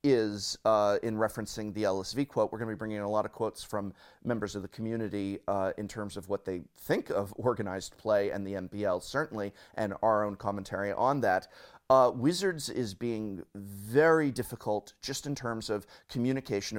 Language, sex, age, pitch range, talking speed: English, male, 30-49, 95-120 Hz, 190 wpm